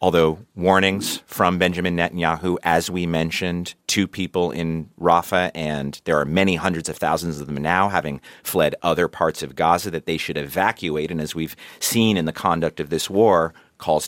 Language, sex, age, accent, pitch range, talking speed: English, male, 40-59, American, 80-100 Hz, 185 wpm